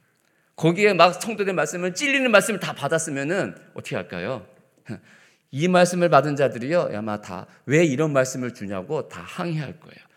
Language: Korean